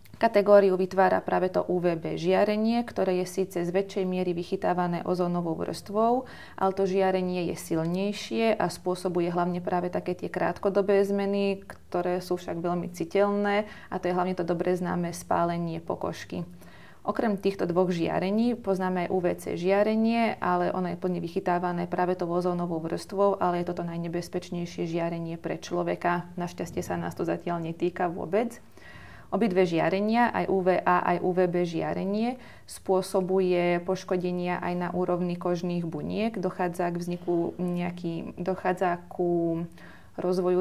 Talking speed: 140 wpm